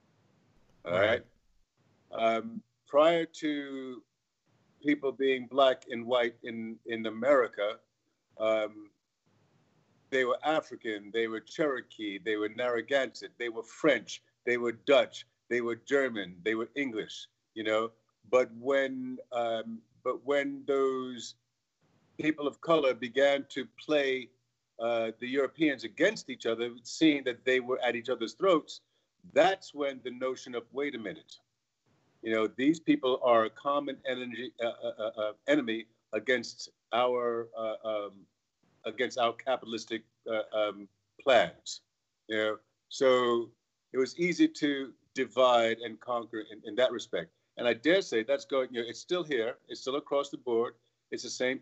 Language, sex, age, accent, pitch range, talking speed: English, male, 50-69, American, 115-135 Hz, 145 wpm